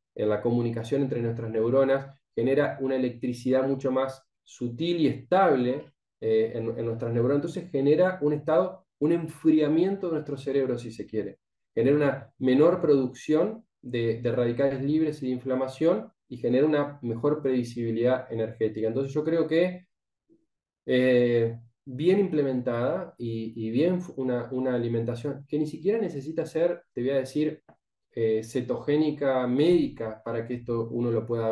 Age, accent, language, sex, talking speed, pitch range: 20-39, Argentinian, Spanish, male, 150 wpm, 120-150 Hz